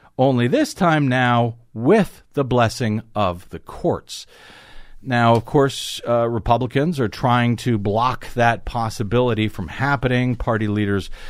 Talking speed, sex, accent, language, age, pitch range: 135 wpm, male, American, English, 50-69, 110-145 Hz